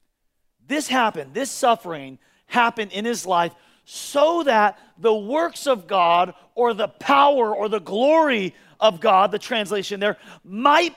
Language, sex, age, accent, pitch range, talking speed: English, male, 40-59, American, 185-280 Hz, 140 wpm